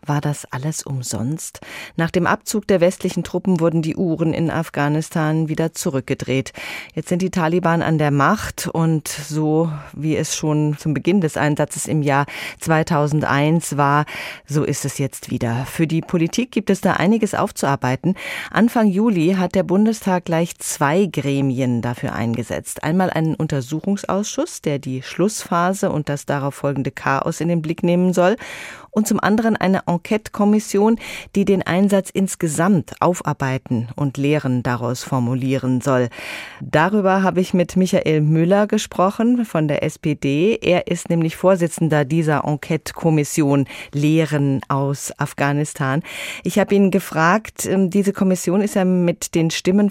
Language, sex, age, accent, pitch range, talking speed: German, female, 30-49, German, 145-185 Hz, 145 wpm